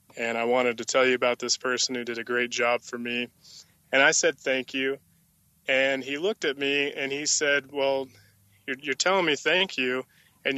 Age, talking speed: 20-39, 210 wpm